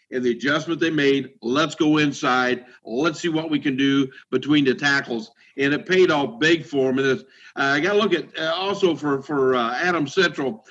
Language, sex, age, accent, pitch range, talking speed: English, male, 50-69, American, 135-185 Hz, 220 wpm